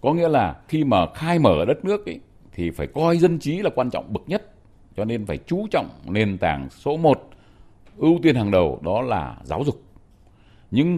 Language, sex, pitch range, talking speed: Vietnamese, male, 95-150 Hz, 210 wpm